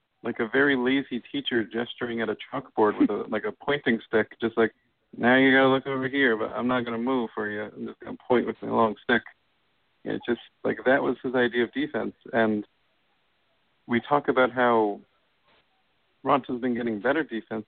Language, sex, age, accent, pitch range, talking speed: English, male, 50-69, American, 105-125 Hz, 205 wpm